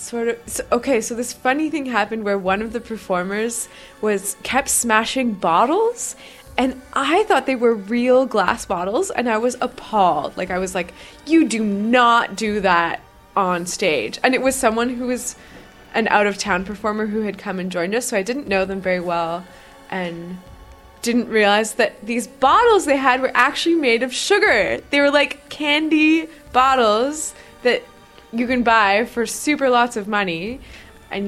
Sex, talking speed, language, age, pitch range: female, 175 wpm, English, 20-39, 200-295 Hz